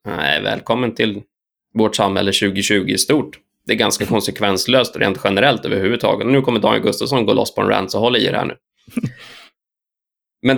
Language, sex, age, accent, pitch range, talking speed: Swedish, male, 20-39, native, 105-135 Hz, 180 wpm